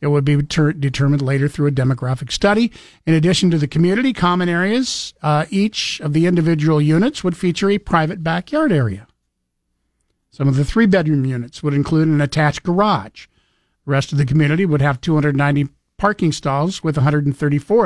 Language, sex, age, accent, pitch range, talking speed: English, male, 50-69, American, 140-165 Hz, 170 wpm